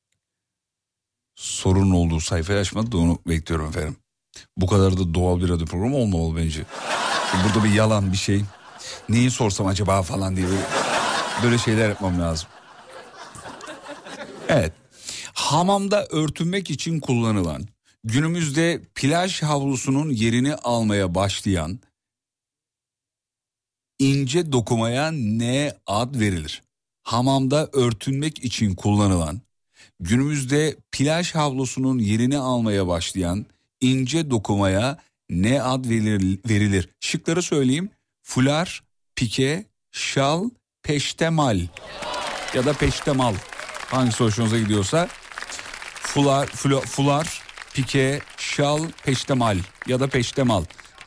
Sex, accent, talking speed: male, native, 95 wpm